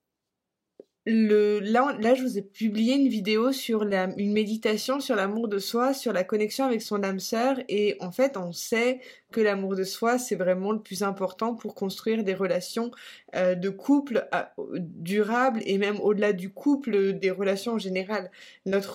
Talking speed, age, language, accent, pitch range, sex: 175 wpm, 20-39, French, French, 195-230 Hz, female